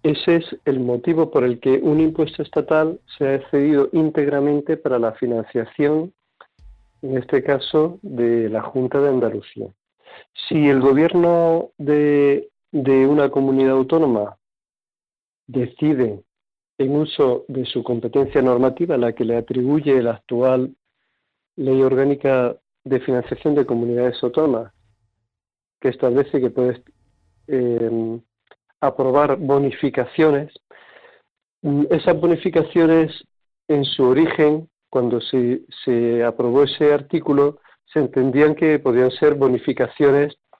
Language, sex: Spanish, male